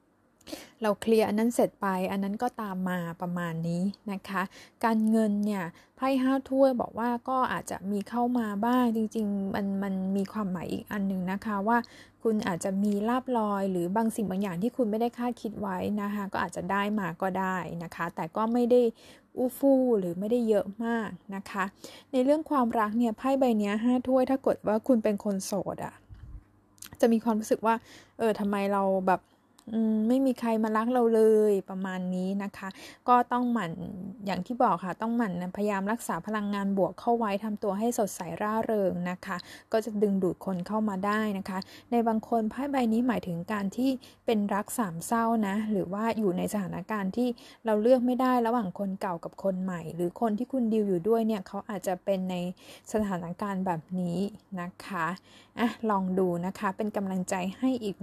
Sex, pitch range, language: female, 190-235 Hz, Thai